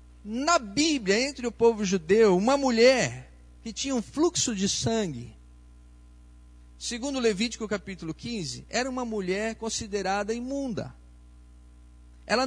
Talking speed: 115 wpm